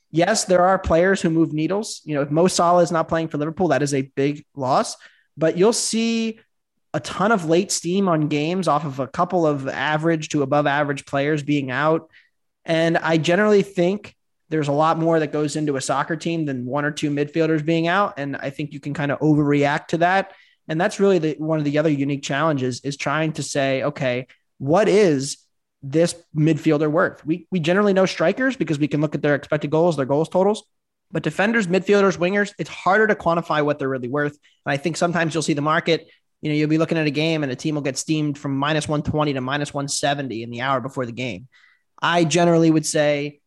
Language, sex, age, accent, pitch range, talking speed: English, male, 20-39, American, 140-170 Hz, 220 wpm